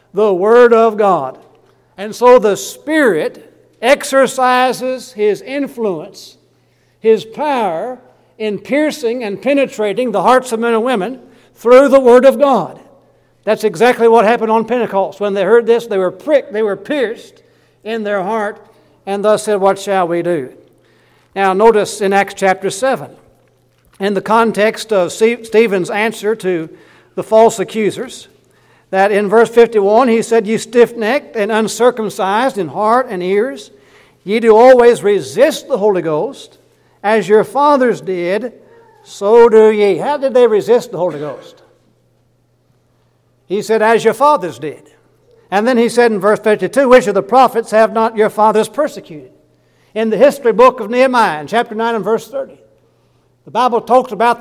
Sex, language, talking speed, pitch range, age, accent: male, English, 160 wpm, 205-250 Hz, 60-79, American